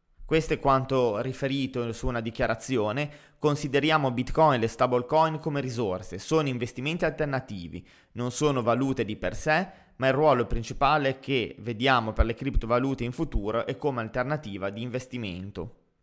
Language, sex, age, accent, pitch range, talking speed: Italian, male, 20-39, native, 120-145 Hz, 145 wpm